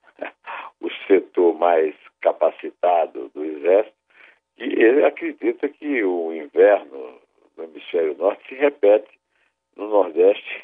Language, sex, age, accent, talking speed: Portuguese, male, 60-79, Brazilian, 105 wpm